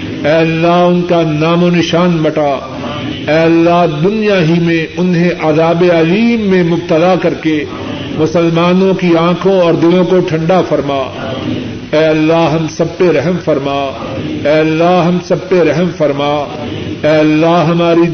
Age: 50-69